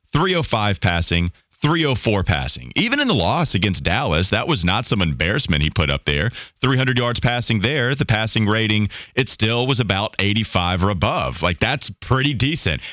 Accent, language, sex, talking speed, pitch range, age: American, English, male, 175 wpm, 100-155 Hz, 30-49